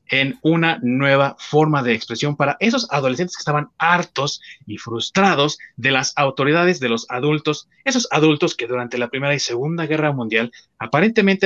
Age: 30-49